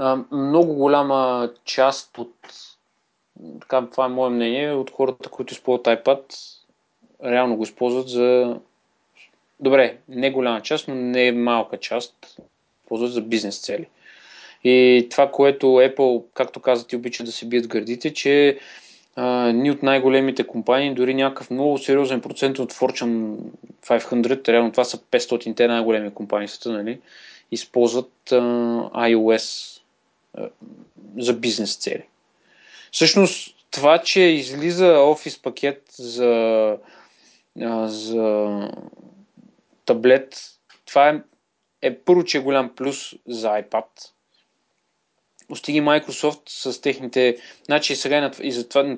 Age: 20-39